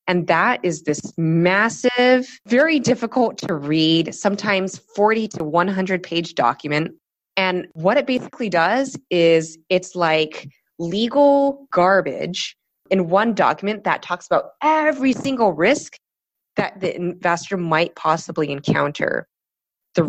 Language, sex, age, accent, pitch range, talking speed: English, female, 20-39, American, 160-215 Hz, 120 wpm